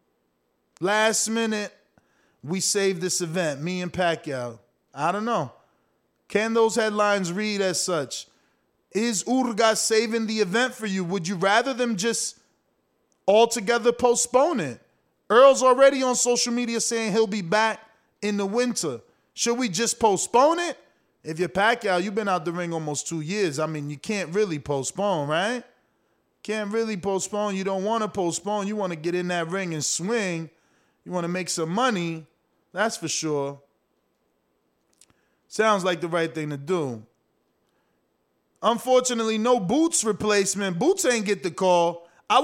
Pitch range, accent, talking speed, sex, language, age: 175-230 Hz, American, 155 wpm, male, English, 20-39